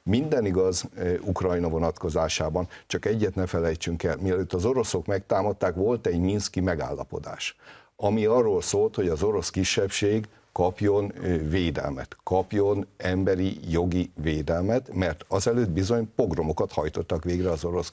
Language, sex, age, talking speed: Hungarian, male, 60-79, 125 wpm